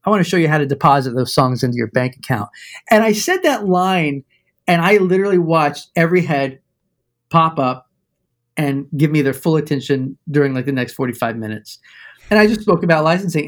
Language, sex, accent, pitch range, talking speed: English, male, American, 140-200 Hz, 200 wpm